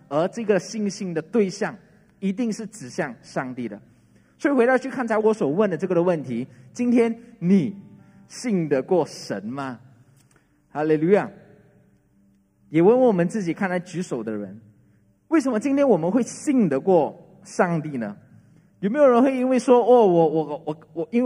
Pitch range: 145-215 Hz